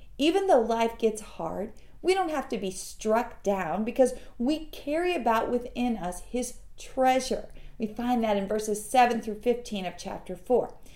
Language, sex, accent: English, female, American